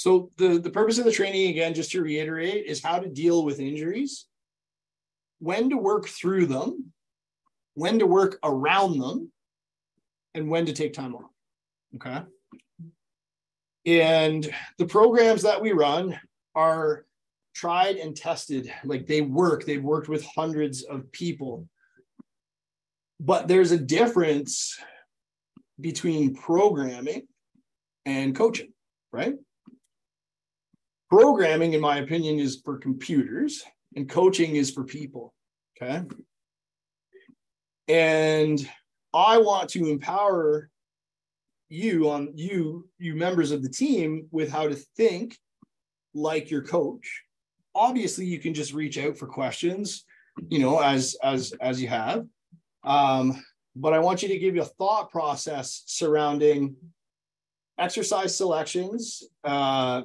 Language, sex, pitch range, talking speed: English, male, 145-190 Hz, 125 wpm